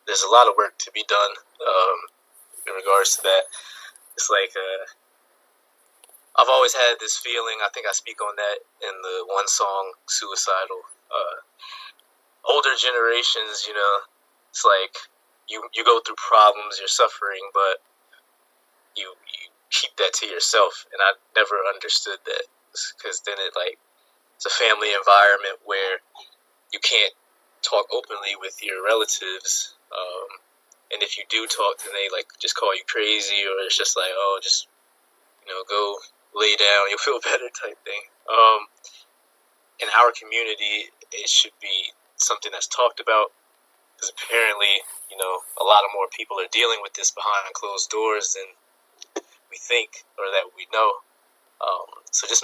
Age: 20-39